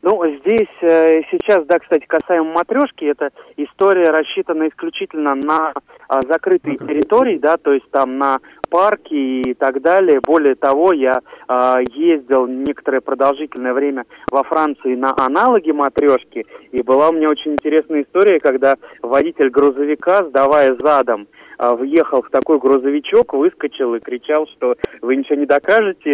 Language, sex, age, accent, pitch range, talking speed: Russian, male, 30-49, native, 135-170 Hz, 135 wpm